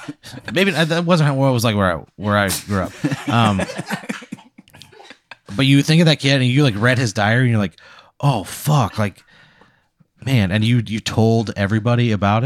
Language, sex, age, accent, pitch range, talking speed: English, male, 30-49, American, 100-125 Hz, 190 wpm